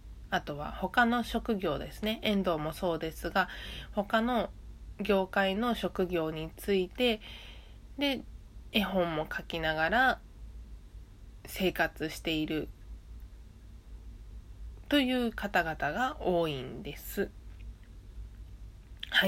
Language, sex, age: Japanese, female, 20-39